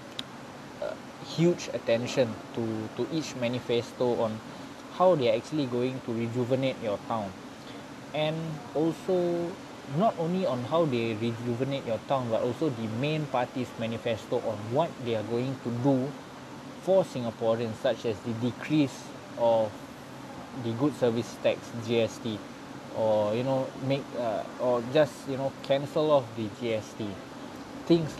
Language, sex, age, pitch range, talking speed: Malay, male, 20-39, 120-160 Hz, 140 wpm